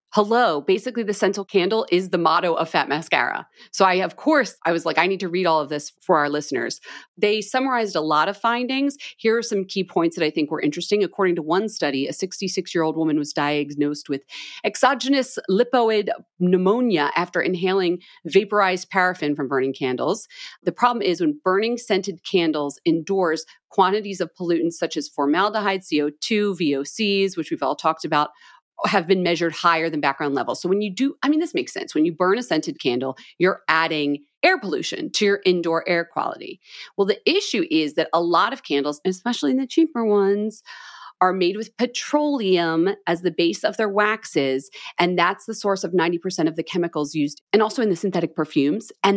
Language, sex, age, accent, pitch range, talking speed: English, female, 40-59, American, 160-220 Hz, 190 wpm